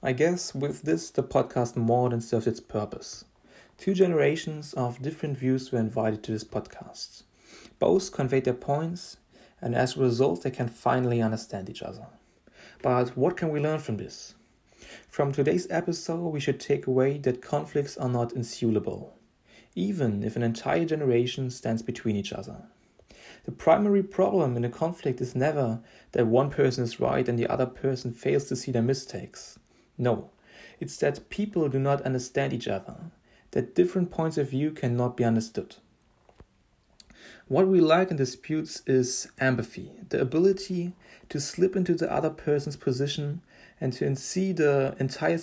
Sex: male